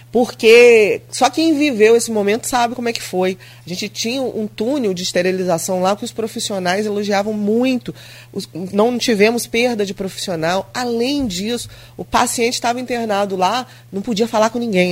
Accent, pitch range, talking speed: Brazilian, 170-225 Hz, 165 wpm